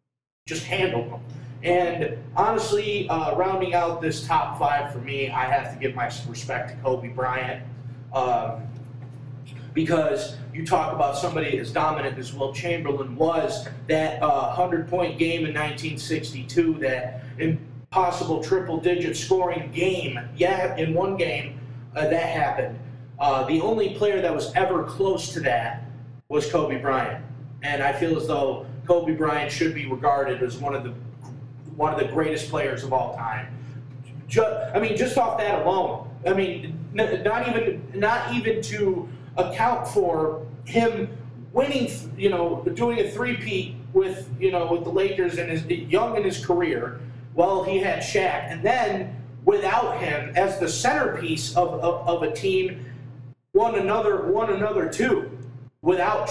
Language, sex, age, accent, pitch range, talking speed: English, male, 30-49, American, 125-175 Hz, 150 wpm